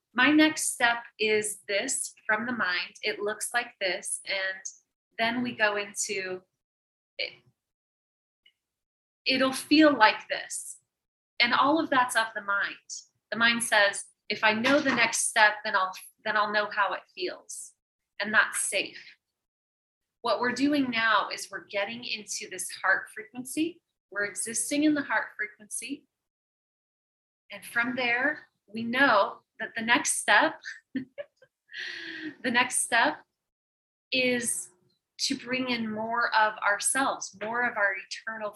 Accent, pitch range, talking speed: American, 210-265 Hz, 140 wpm